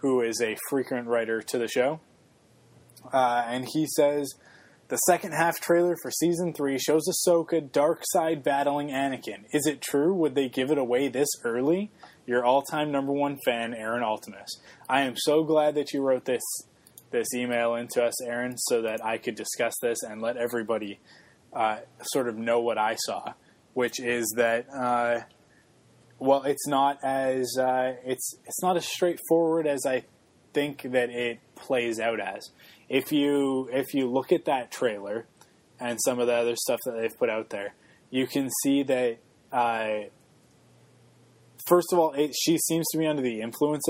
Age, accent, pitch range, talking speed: 20-39, American, 120-145 Hz, 175 wpm